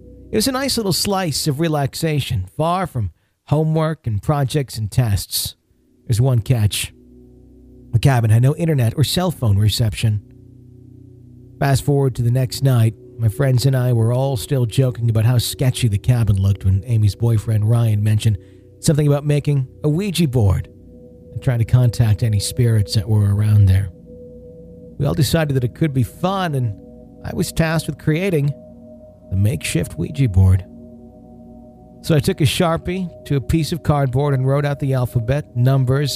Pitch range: 105-140 Hz